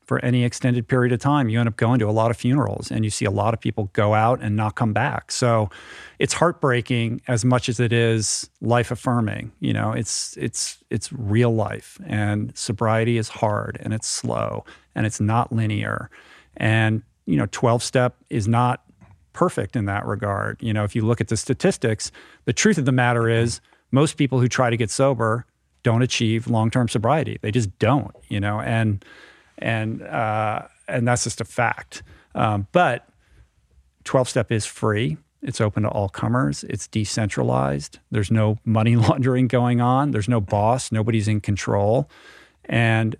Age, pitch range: 40-59, 110-125 Hz